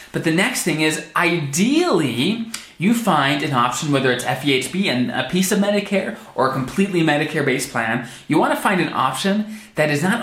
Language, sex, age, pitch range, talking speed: English, male, 20-39, 125-180 Hz, 190 wpm